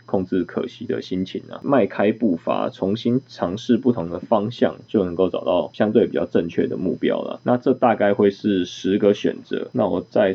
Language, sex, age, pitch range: Chinese, male, 20-39, 95-120 Hz